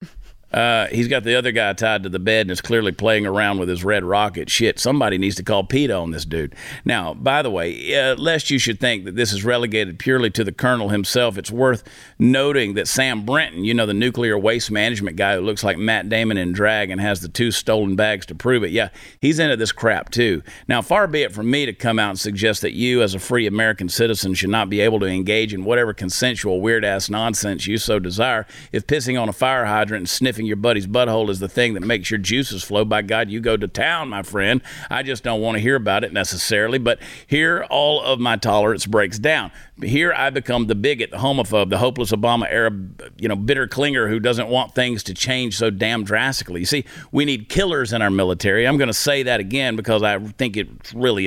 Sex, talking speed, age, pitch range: male, 235 wpm, 50-69, 105-125 Hz